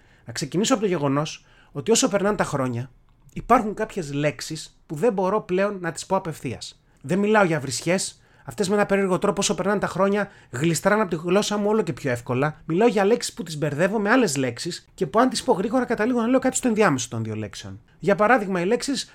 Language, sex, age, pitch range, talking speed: Greek, male, 30-49, 135-205 Hz, 225 wpm